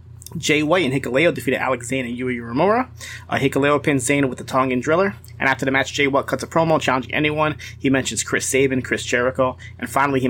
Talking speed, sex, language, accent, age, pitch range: 220 wpm, male, English, American, 30-49, 120-135 Hz